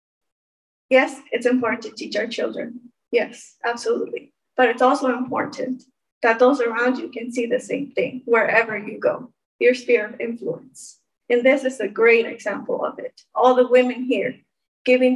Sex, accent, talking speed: female, American, 165 wpm